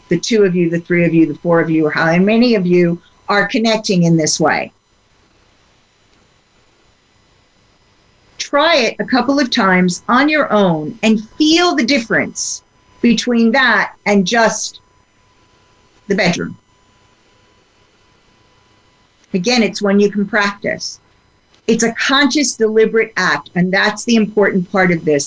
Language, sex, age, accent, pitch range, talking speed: English, female, 50-69, American, 145-220 Hz, 140 wpm